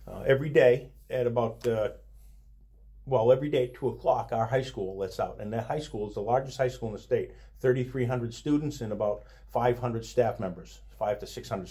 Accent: American